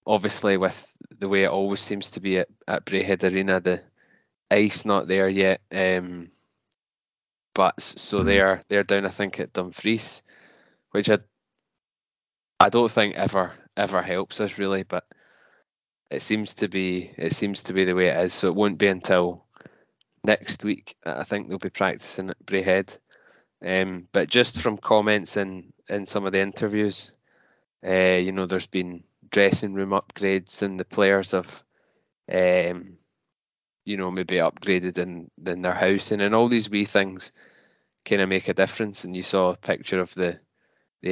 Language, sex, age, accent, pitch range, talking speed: English, male, 20-39, British, 90-100 Hz, 170 wpm